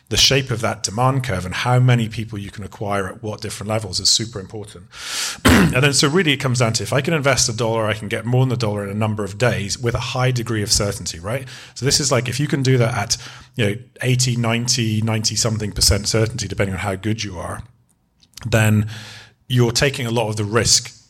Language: English